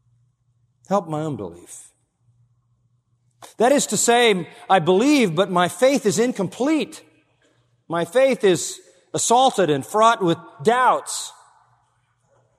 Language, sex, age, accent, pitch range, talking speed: English, male, 50-69, American, 120-190 Hz, 105 wpm